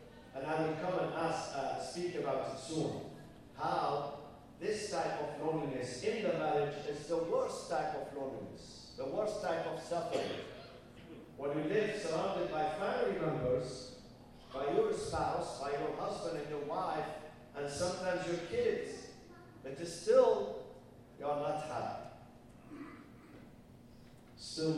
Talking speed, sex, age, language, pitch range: 135 wpm, male, 50-69, English, 125-170 Hz